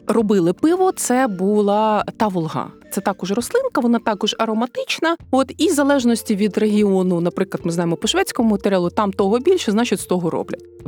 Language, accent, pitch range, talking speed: Ukrainian, native, 170-230 Hz, 165 wpm